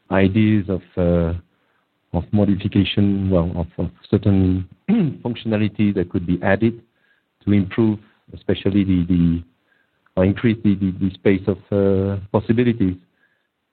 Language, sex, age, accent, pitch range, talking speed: English, male, 50-69, French, 90-110 Hz, 120 wpm